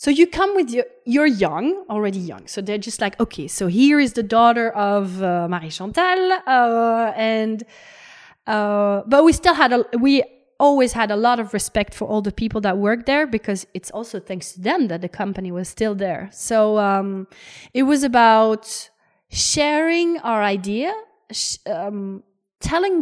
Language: French